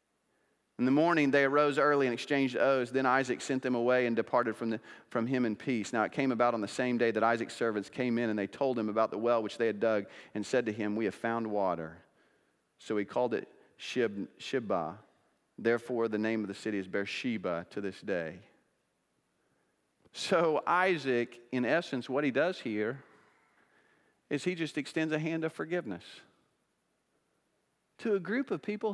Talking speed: 185 wpm